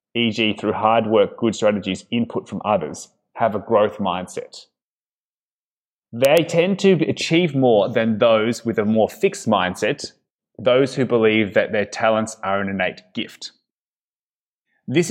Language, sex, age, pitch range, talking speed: English, male, 20-39, 110-150 Hz, 145 wpm